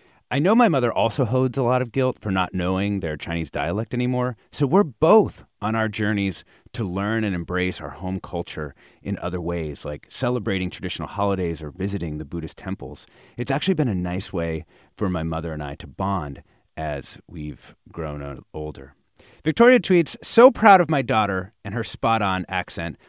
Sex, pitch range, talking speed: male, 90-145 Hz, 185 wpm